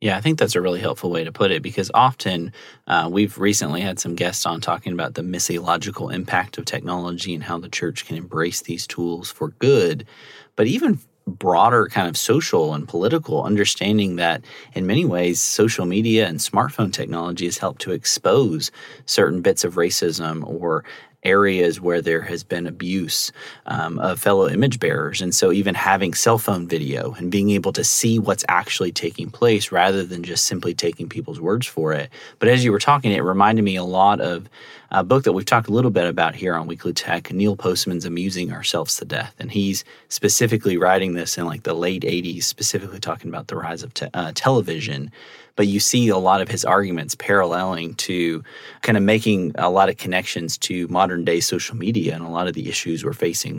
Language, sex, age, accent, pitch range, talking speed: English, male, 30-49, American, 85-105 Hz, 200 wpm